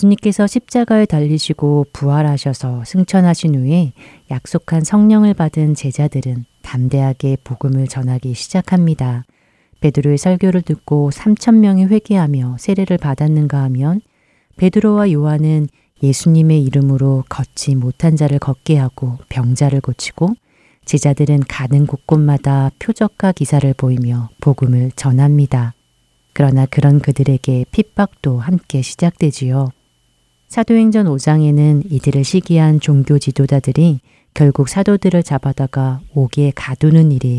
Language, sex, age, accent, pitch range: Korean, female, 30-49, native, 135-170 Hz